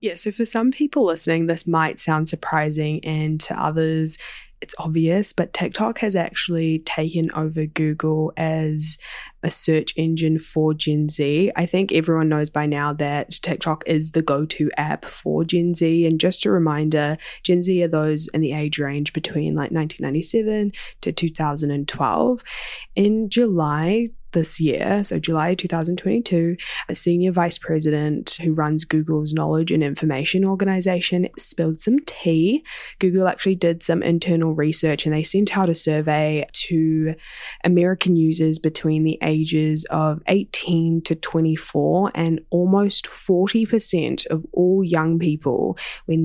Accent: Australian